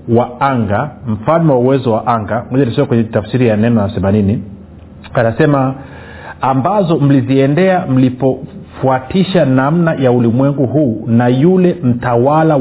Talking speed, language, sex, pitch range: 120 wpm, Swahili, male, 115-145 Hz